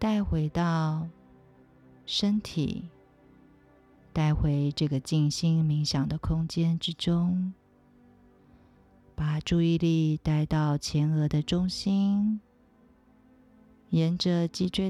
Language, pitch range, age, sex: Chinese, 145-175 Hz, 50-69, female